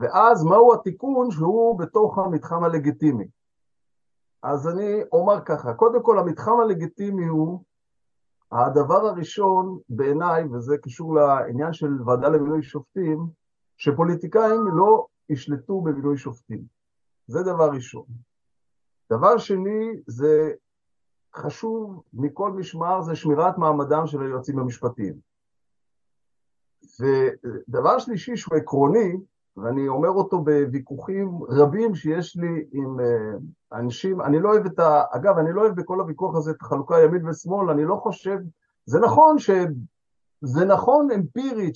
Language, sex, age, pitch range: Hebrew, male, 50-69, 150-210 Hz